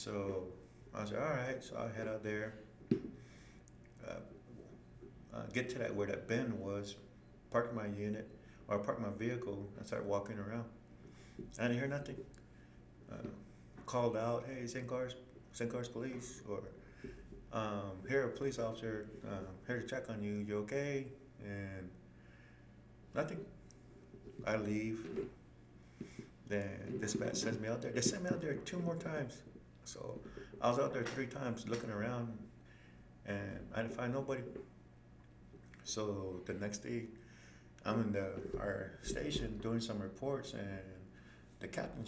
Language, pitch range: English, 95-125 Hz